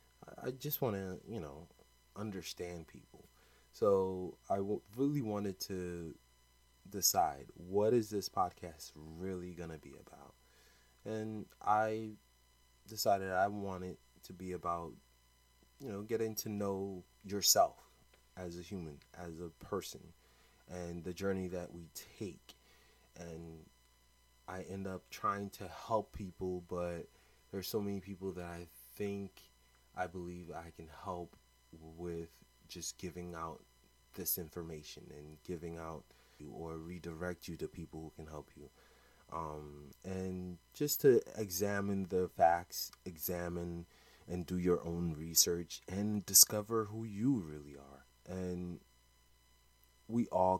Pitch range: 75-95 Hz